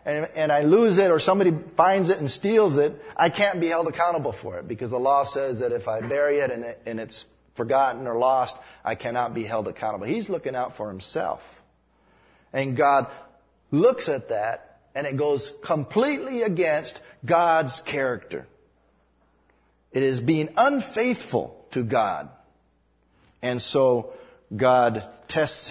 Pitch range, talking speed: 110-170 Hz, 155 wpm